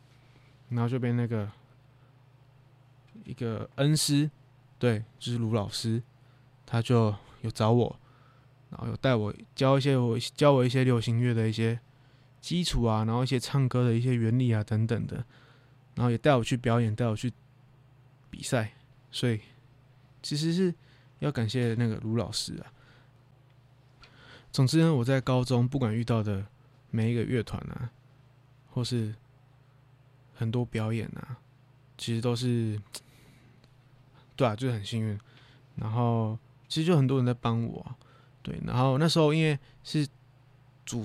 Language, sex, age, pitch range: Chinese, male, 20-39, 120-130 Hz